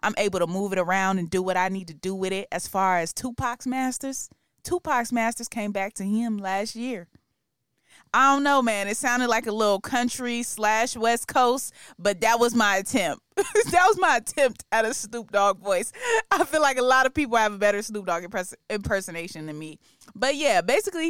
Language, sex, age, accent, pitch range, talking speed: English, female, 20-39, American, 195-255 Hz, 210 wpm